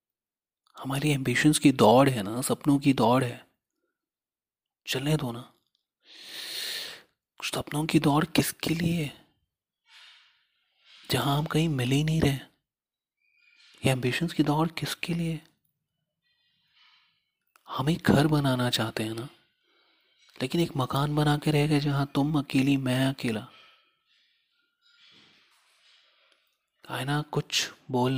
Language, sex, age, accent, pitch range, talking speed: Hindi, male, 30-49, native, 125-155 Hz, 110 wpm